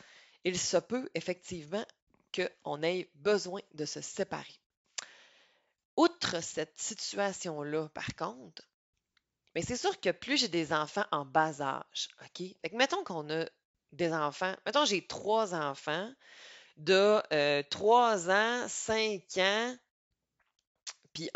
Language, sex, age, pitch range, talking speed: French, female, 30-49, 160-225 Hz, 125 wpm